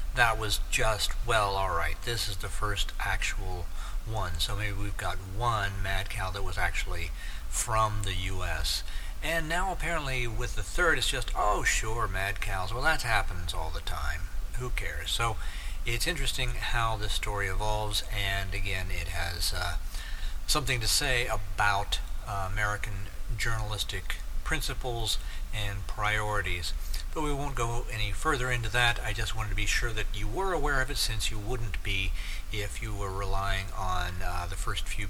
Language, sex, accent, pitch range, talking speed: English, male, American, 90-115 Hz, 170 wpm